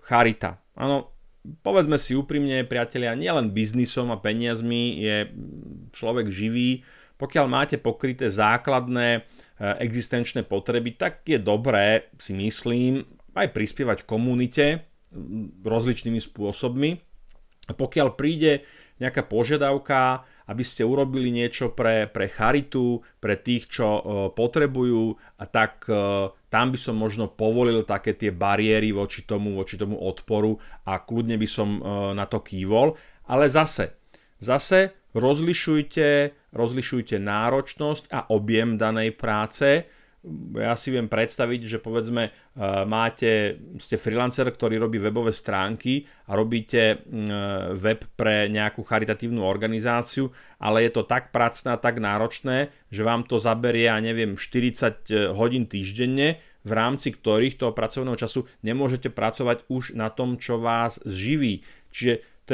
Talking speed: 125 wpm